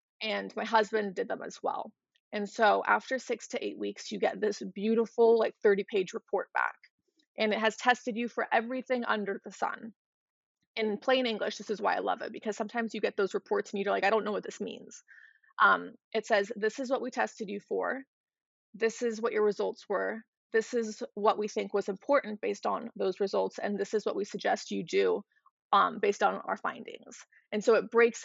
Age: 20-39